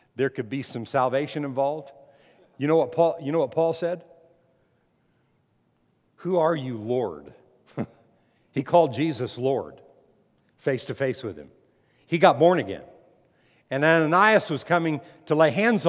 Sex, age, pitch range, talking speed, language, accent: male, 50-69, 130-165 Hz, 145 wpm, English, American